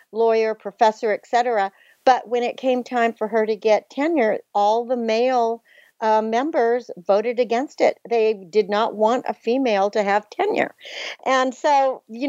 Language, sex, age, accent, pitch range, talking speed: English, female, 60-79, American, 220-275 Hz, 160 wpm